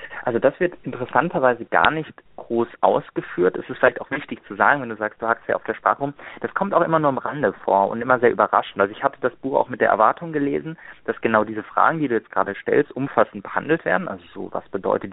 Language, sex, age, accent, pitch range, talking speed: German, male, 30-49, German, 105-135 Hz, 250 wpm